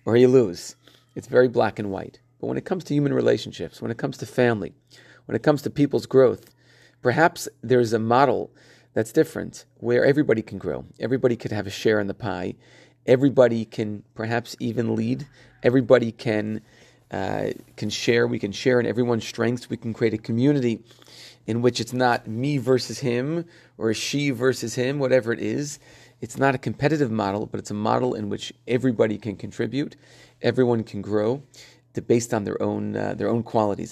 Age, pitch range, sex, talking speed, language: 30-49, 110-130 Hz, male, 185 wpm, English